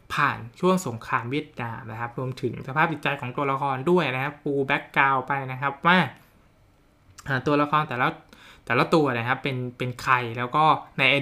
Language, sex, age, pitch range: Thai, male, 20-39, 125-150 Hz